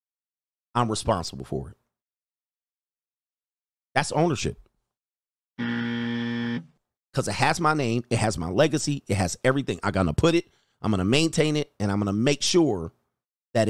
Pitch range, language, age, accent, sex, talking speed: 120-185 Hz, English, 40-59, American, male, 155 wpm